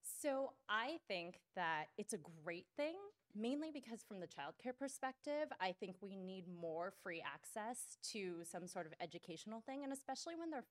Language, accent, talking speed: English, American, 175 wpm